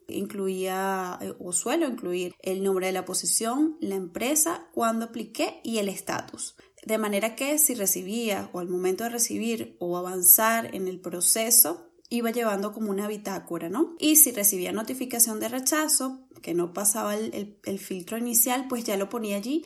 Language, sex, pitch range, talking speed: Spanish, female, 195-255 Hz, 170 wpm